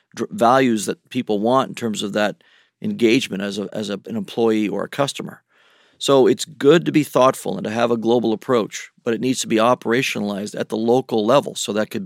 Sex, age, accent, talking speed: male, 40-59, American, 215 wpm